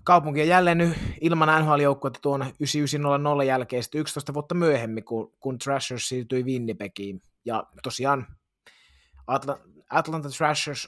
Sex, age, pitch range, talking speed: male, 20-39, 115-140 Hz, 130 wpm